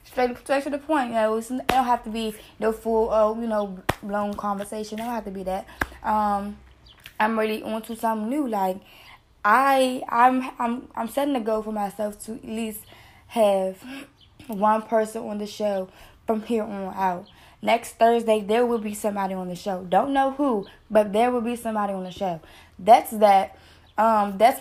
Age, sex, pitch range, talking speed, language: 10-29, female, 205-235 Hz, 195 wpm, English